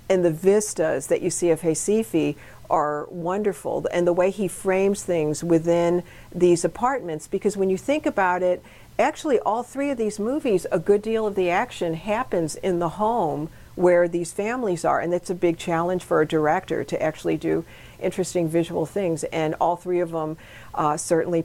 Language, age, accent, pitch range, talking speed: English, 50-69, American, 160-190 Hz, 185 wpm